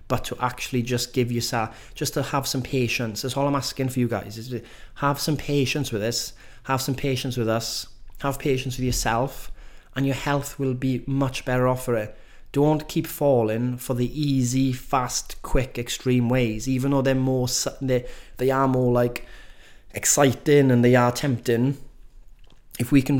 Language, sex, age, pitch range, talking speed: English, male, 30-49, 115-130 Hz, 185 wpm